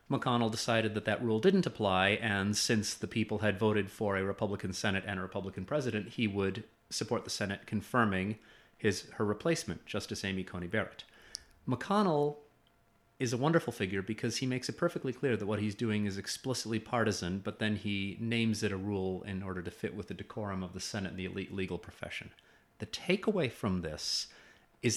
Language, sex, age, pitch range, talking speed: English, male, 30-49, 100-125 Hz, 190 wpm